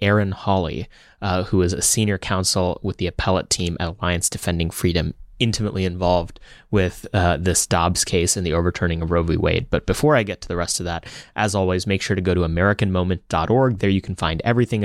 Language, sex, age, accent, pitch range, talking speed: English, male, 30-49, American, 90-105 Hz, 210 wpm